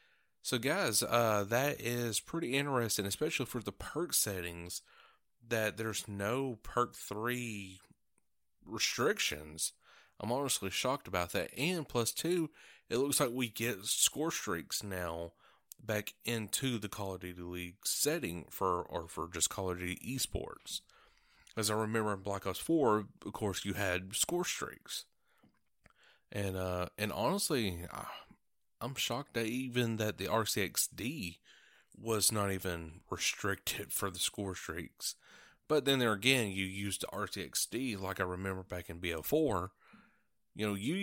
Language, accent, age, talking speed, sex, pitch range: English, American, 30-49, 160 wpm, male, 95-120 Hz